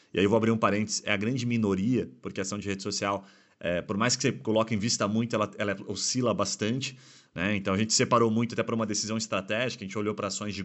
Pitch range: 105-135 Hz